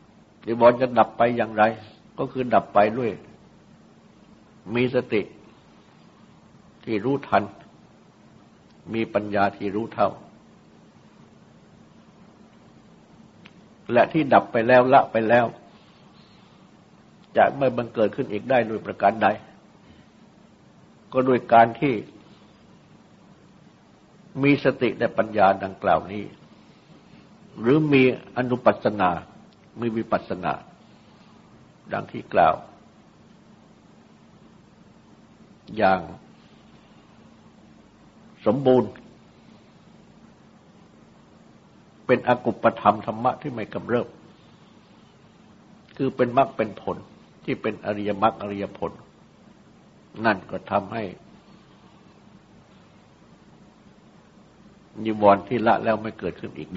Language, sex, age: Thai, male, 60-79